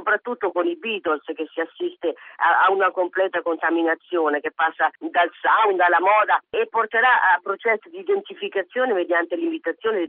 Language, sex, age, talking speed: Italian, female, 40-59, 160 wpm